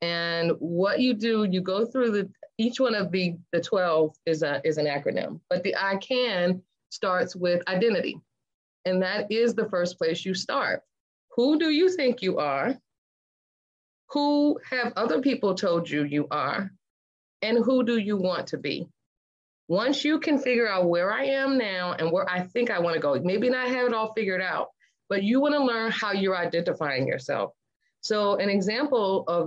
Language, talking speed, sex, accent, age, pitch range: English, 180 wpm, female, American, 30-49, 170-235 Hz